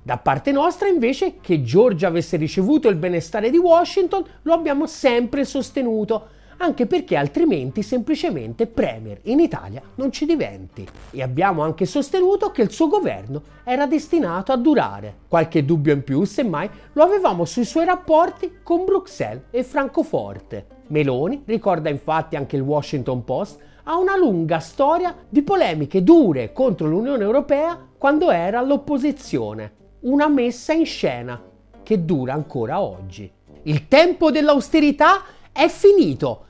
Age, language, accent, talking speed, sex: 40-59, Italian, native, 140 wpm, male